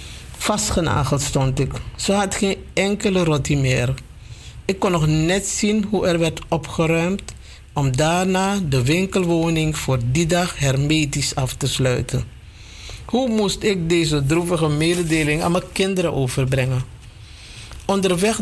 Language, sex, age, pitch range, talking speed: Dutch, male, 60-79, 135-195 Hz, 130 wpm